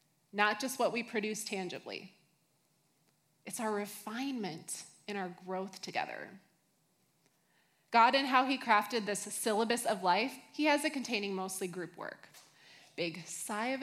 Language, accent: English, American